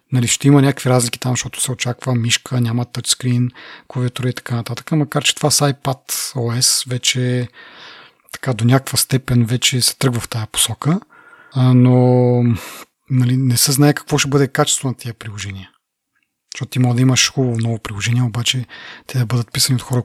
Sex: male